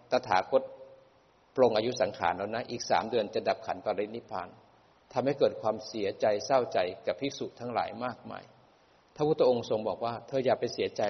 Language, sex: Thai, male